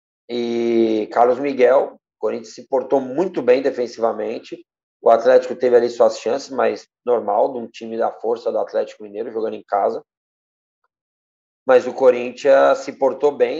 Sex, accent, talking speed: male, Brazilian, 155 wpm